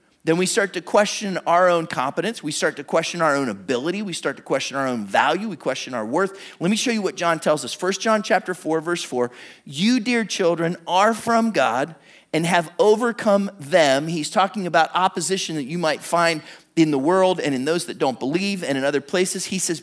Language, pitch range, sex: English, 165-215 Hz, male